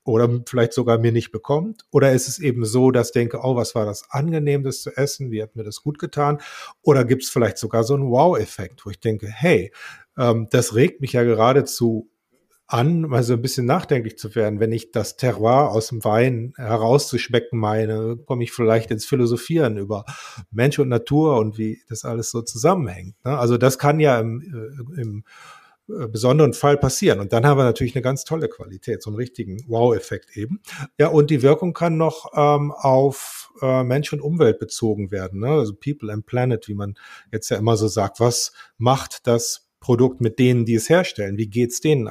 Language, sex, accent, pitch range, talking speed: German, male, German, 115-145 Hz, 200 wpm